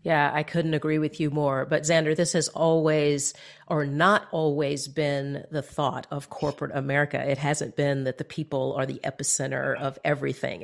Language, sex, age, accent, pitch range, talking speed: English, female, 40-59, American, 145-175 Hz, 180 wpm